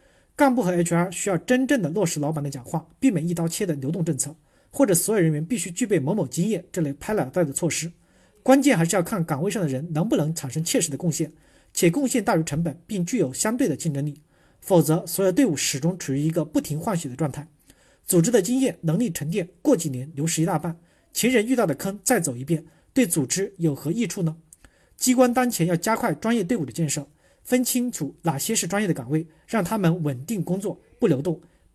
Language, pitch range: Chinese, 155-210 Hz